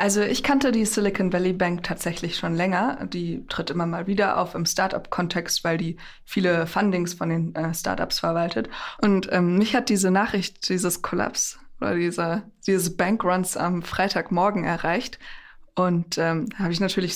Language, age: German, 20-39